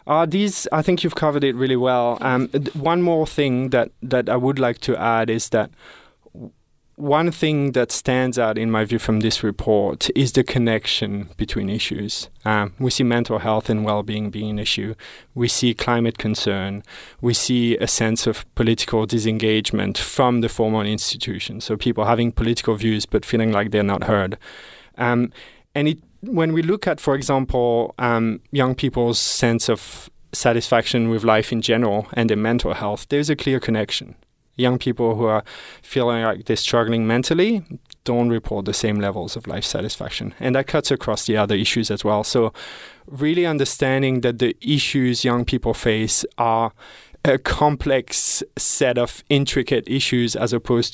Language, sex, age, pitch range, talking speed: English, male, 20-39, 110-130 Hz, 170 wpm